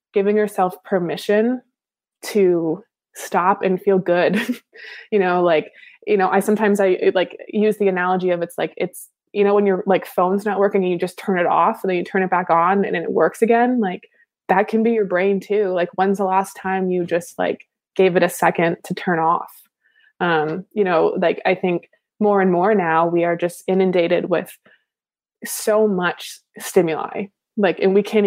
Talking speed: 200 wpm